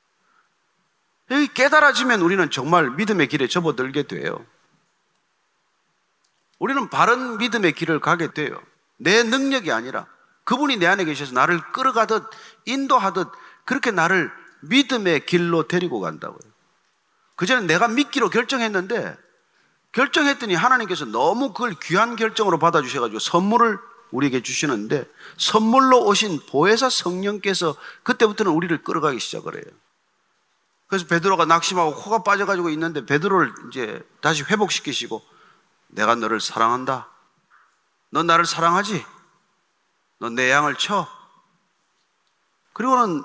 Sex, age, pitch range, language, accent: male, 40-59, 165-235 Hz, Korean, native